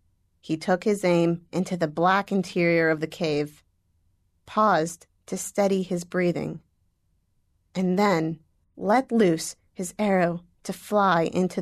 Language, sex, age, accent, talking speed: English, female, 30-49, American, 130 wpm